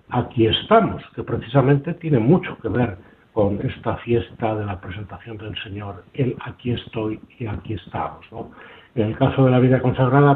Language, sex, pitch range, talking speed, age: Spanish, male, 110-135 Hz, 175 wpm, 60-79